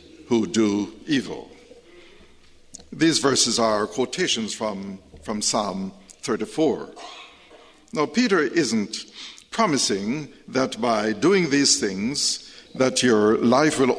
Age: 60-79